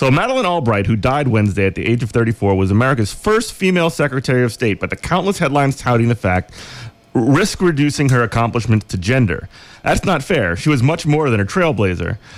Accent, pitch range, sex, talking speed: American, 110-145 Hz, male, 200 wpm